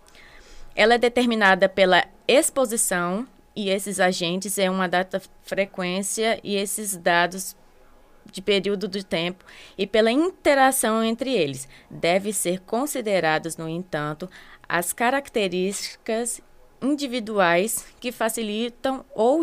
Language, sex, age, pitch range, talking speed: Portuguese, female, 20-39, 185-230 Hz, 105 wpm